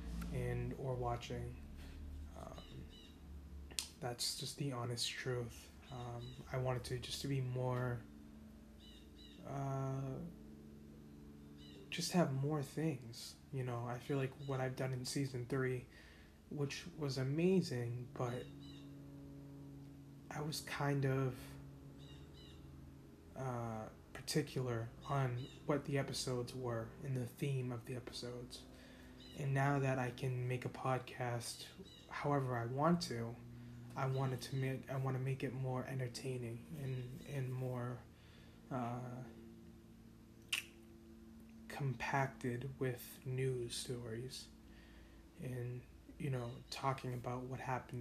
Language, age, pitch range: English, 20-39, 110-135 Hz